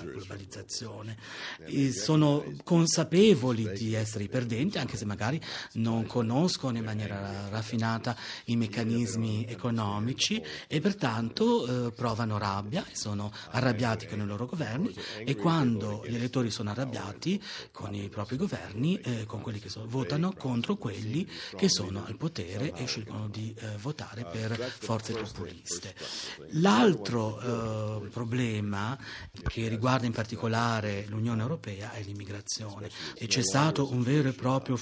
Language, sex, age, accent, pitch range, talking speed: Italian, male, 40-59, native, 110-135 Hz, 135 wpm